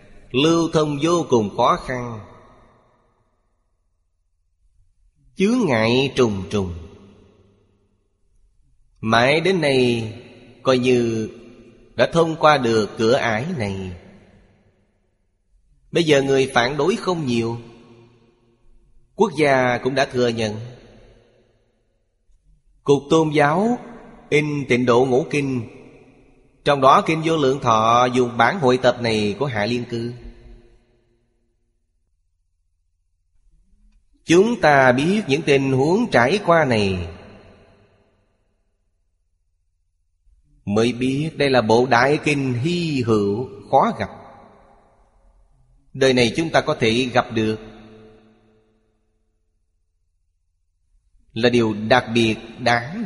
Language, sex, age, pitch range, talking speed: Vietnamese, male, 20-39, 100-130 Hz, 105 wpm